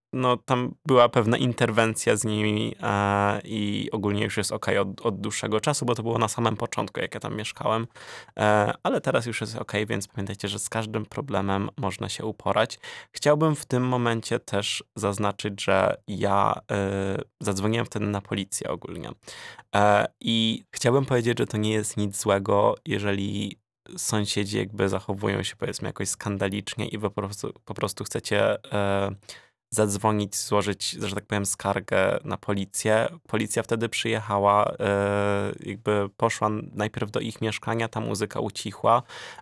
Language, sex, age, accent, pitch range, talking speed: Polish, male, 20-39, native, 100-115 Hz, 155 wpm